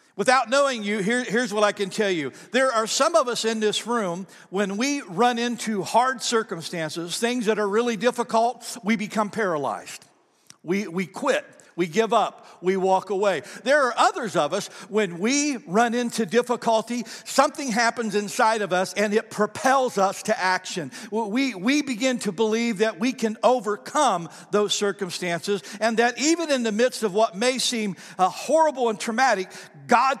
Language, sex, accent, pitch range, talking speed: English, male, American, 195-240 Hz, 175 wpm